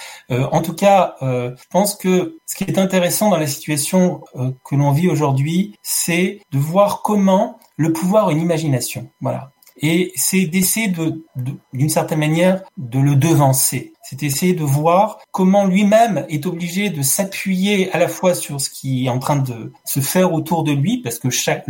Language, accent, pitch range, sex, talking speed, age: French, French, 130-180 Hz, male, 190 wpm, 30-49